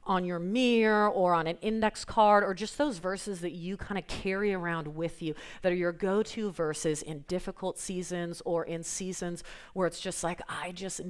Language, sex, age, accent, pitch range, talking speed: English, female, 30-49, American, 165-205 Hz, 200 wpm